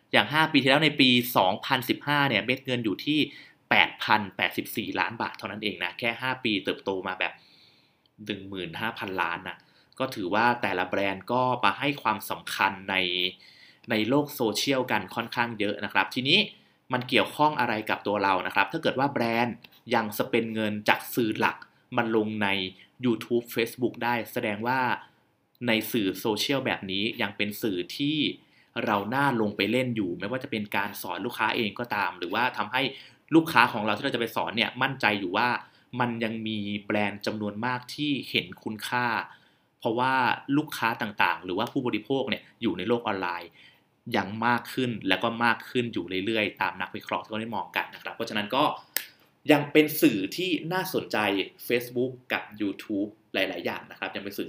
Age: 20-39